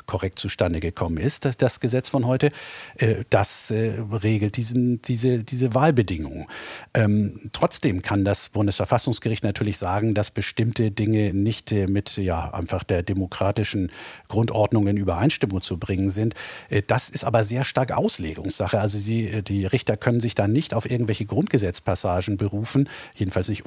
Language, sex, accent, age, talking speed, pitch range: German, male, German, 50-69, 145 wpm, 100-125 Hz